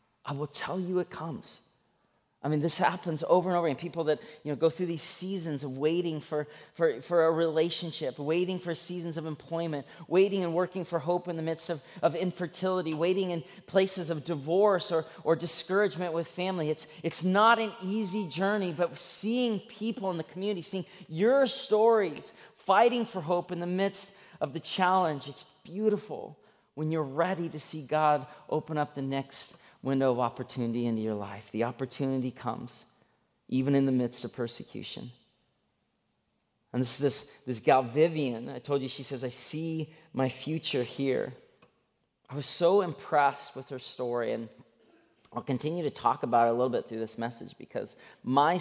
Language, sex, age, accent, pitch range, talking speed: English, male, 30-49, American, 130-180 Hz, 180 wpm